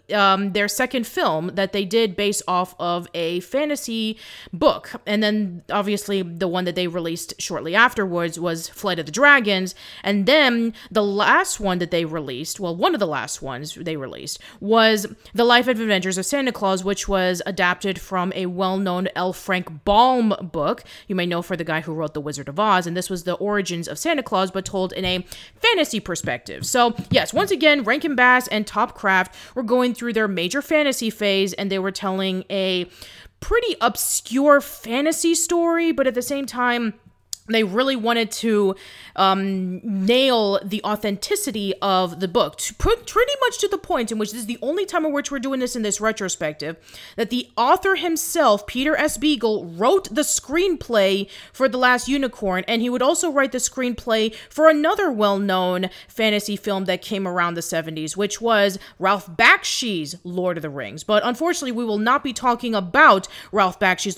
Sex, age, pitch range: female, 30-49, 185-250 Hz